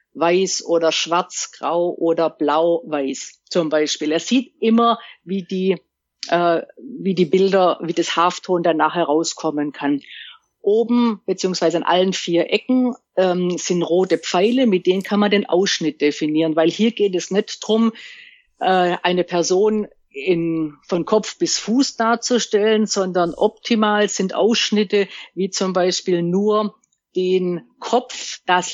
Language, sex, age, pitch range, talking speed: German, female, 50-69, 170-210 Hz, 140 wpm